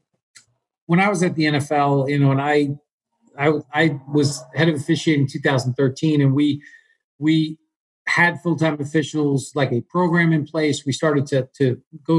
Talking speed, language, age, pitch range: 165 wpm, English, 50-69, 135-160 Hz